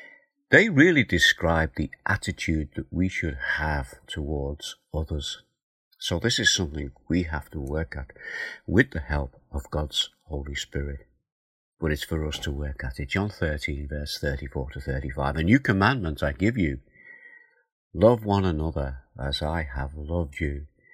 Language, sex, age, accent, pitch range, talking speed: English, male, 50-69, British, 75-100 Hz, 160 wpm